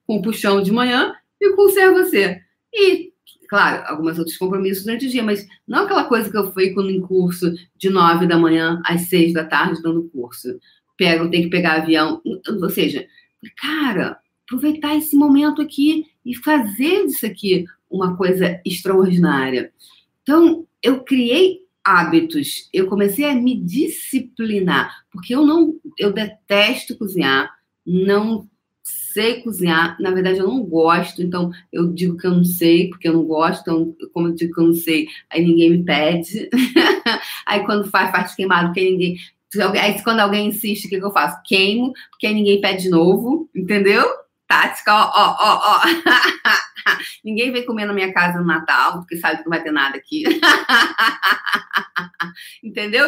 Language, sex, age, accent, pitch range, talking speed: Portuguese, female, 40-59, Brazilian, 175-255 Hz, 165 wpm